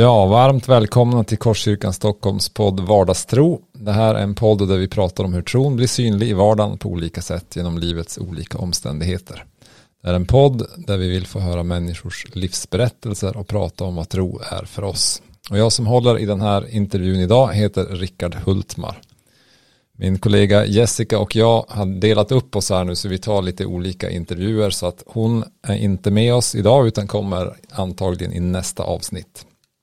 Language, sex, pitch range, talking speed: English, male, 95-110 Hz, 185 wpm